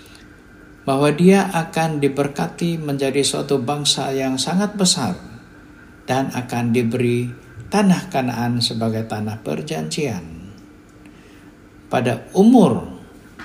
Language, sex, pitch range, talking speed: Malay, male, 110-150 Hz, 90 wpm